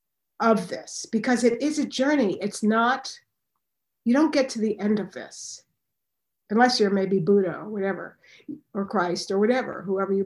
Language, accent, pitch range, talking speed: English, American, 195-235 Hz, 165 wpm